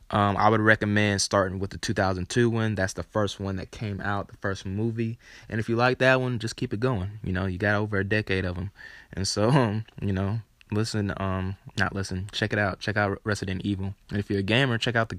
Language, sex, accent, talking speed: English, male, American, 245 wpm